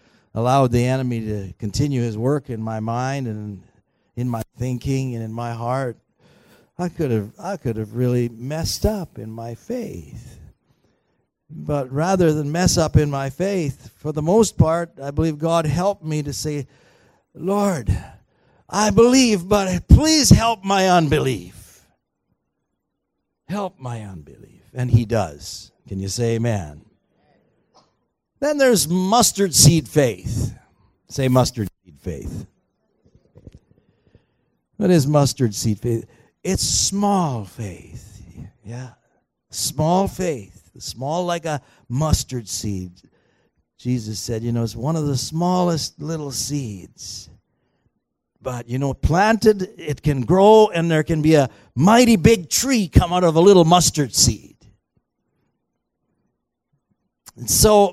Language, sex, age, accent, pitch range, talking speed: English, male, 50-69, American, 115-170 Hz, 130 wpm